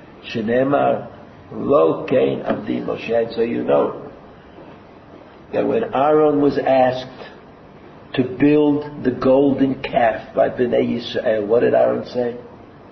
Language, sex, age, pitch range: English, male, 60-79, 130-190 Hz